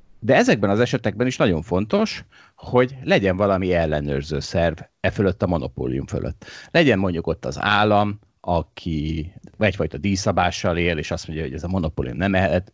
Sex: male